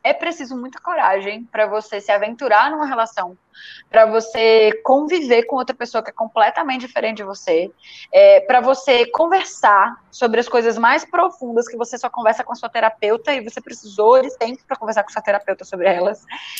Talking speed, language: 190 wpm, Portuguese